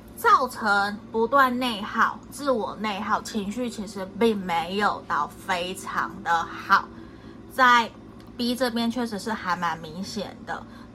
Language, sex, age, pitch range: Chinese, female, 20-39, 195-250 Hz